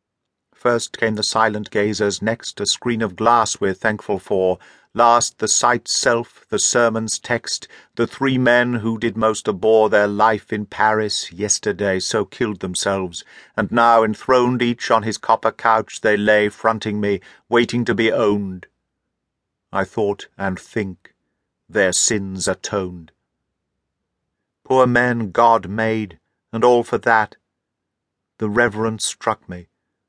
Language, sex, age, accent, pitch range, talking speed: English, male, 50-69, British, 100-115 Hz, 140 wpm